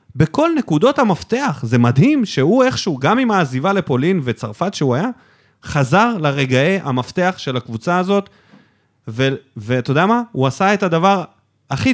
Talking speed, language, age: 145 wpm, Hebrew, 30-49